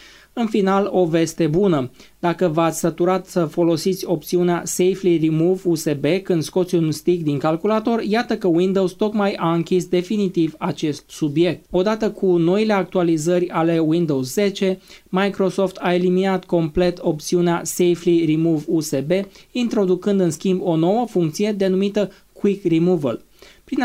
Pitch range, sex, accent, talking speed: 165-195 Hz, male, native, 135 wpm